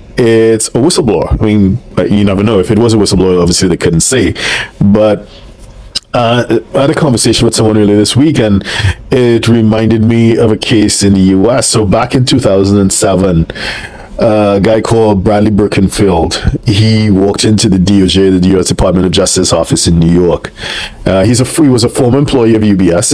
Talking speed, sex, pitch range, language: 190 wpm, male, 95-115 Hz, English